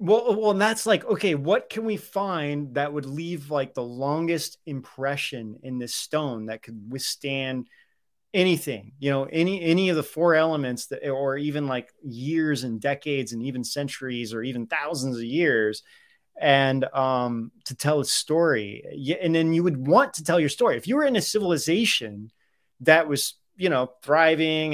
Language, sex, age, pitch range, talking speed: English, male, 30-49, 125-165 Hz, 175 wpm